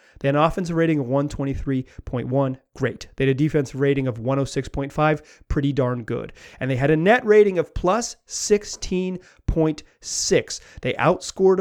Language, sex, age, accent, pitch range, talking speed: English, male, 30-49, American, 130-165 Hz, 150 wpm